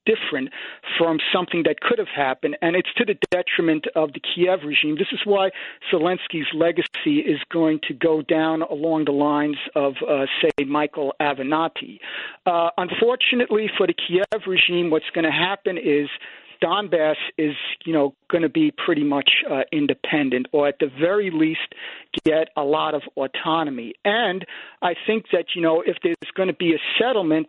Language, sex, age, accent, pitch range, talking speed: English, male, 50-69, American, 160-205 Hz, 170 wpm